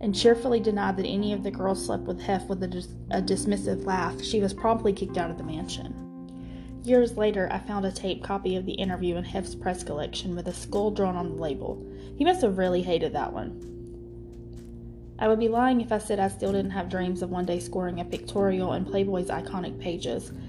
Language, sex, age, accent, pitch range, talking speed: English, female, 20-39, American, 165-205 Hz, 215 wpm